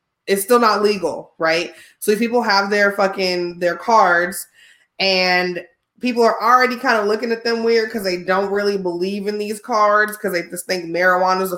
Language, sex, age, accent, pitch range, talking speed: English, female, 20-39, American, 180-210 Hz, 195 wpm